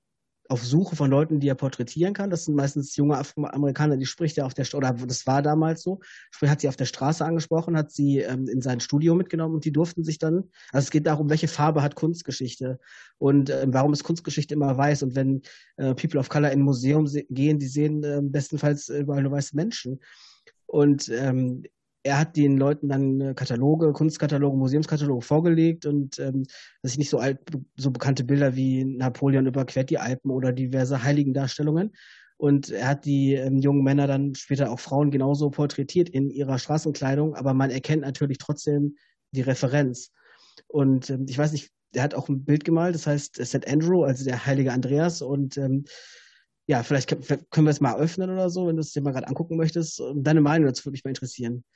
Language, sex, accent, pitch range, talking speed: German, male, German, 135-150 Hz, 205 wpm